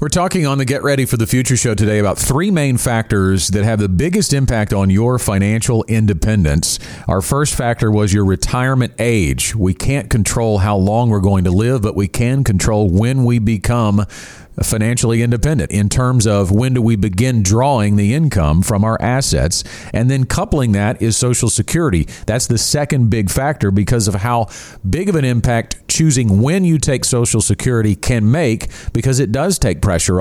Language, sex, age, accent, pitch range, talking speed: English, male, 40-59, American, 100-130 Hz, 185 wpm